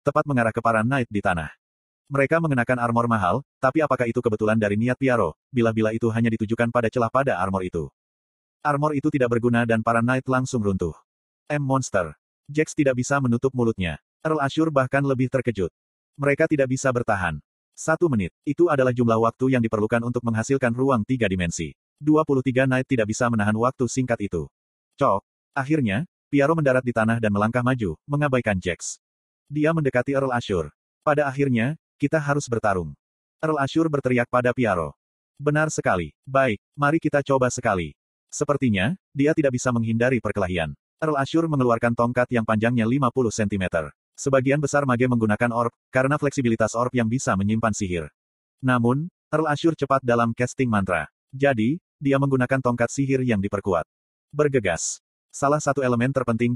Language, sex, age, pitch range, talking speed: Indonesian, male, 30-49, 110-140 Hz, 160 wpm